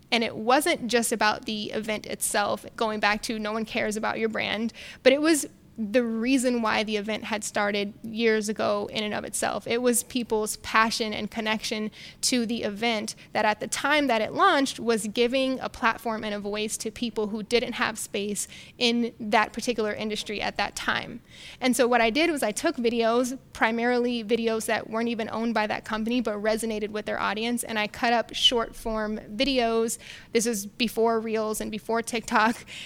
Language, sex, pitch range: English, female, 220-245 Hz